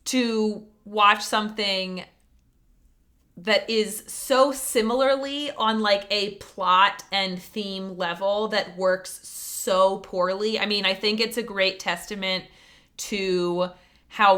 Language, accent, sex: English, American, female